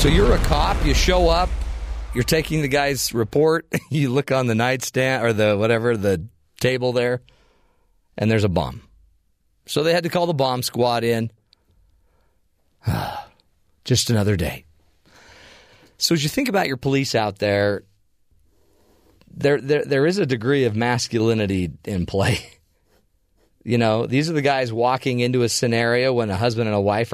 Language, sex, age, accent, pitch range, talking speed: English, male, 40-59, American, 95-125 Hz, 165 wpm